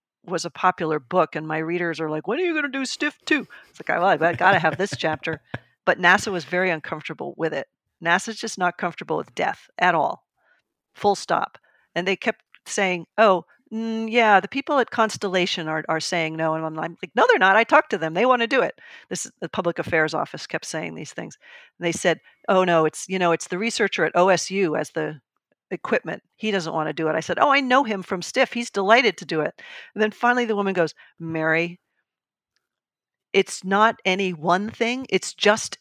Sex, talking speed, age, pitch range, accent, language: female, 220 wpm, 50-69, 165-215 Hz, American, English